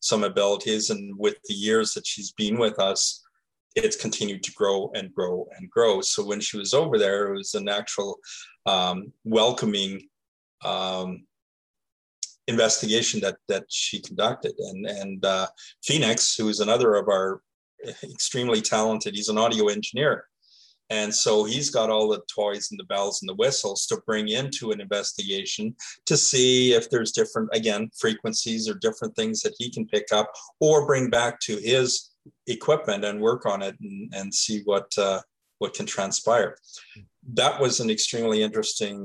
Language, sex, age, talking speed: English, male, 40-59, 165 wpm